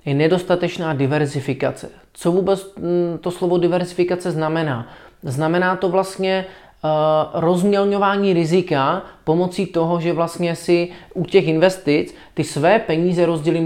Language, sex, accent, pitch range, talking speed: Czech, male, native, 150-175 Hz, 115 wpm